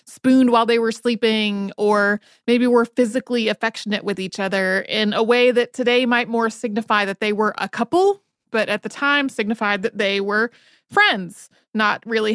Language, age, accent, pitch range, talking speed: English, 30-49, American, 195-235 Hz, 180 wpm